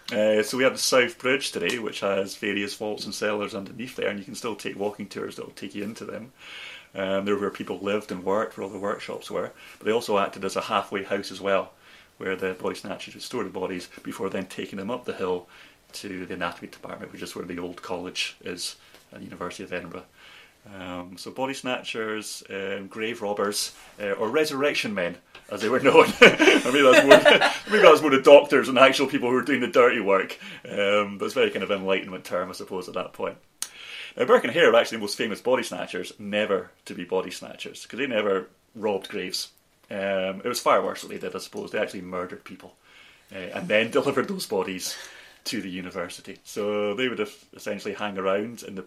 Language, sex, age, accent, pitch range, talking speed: English, male, 30-49, British, 95-110 Hz, 220 wpm